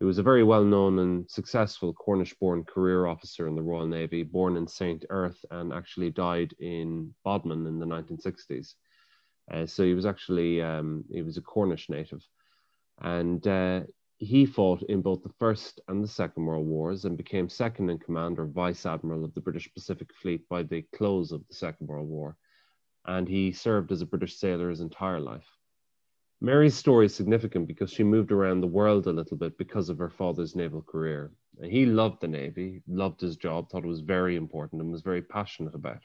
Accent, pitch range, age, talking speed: Irish, 80-100 Hz, 30-49, 185 wpm